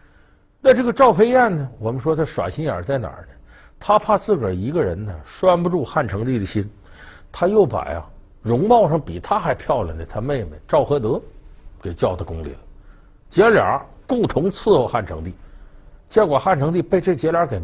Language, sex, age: Chinese, male, 50-69